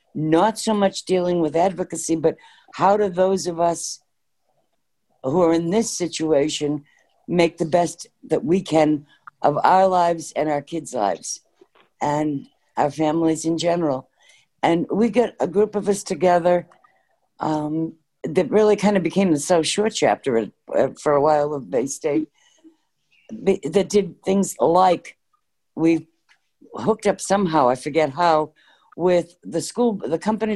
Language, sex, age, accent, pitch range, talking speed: English, female, 60-79, American, 155-200 Hz, 145 wpm